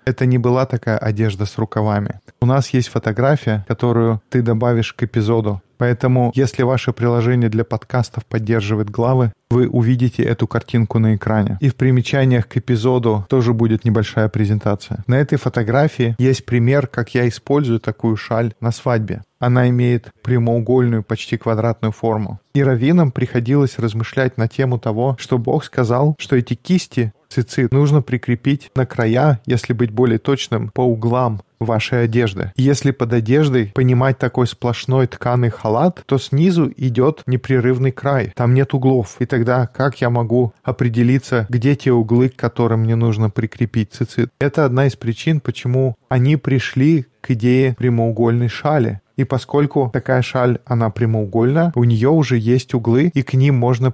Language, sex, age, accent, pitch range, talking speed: Russian, male, 20-39, native, 115-130 Hz, 155 wpm